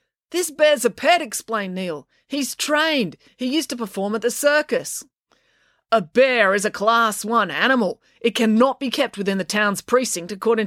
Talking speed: 175 wpm